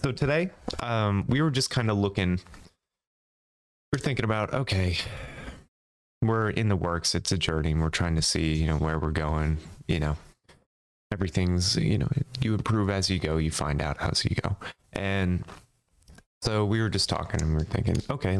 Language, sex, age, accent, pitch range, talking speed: English, male, 20-39, American, 80-105 Hz, 190 wpm